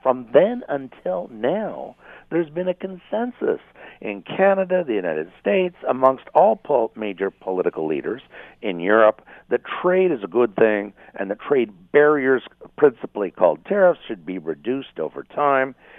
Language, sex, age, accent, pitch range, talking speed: English, male, 60-79, American, 120-180 Hz, 145 wpm